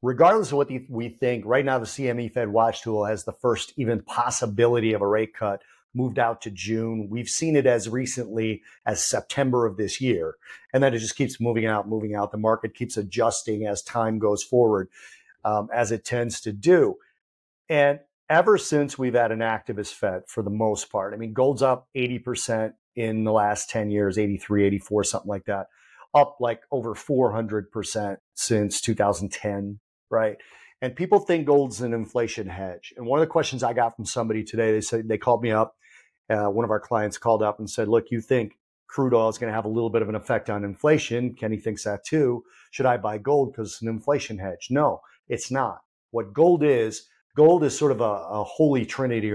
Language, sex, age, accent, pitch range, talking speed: English, male, 40-59, American, 110-130 Hz, 205 wpm